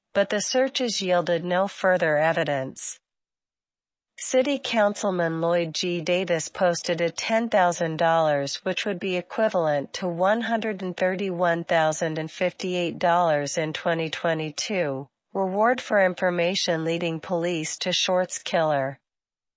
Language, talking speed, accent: English, 95 wpm, American